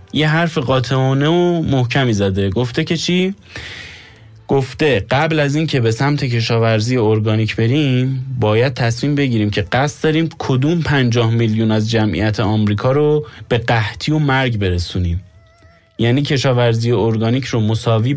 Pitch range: 110-135 Hz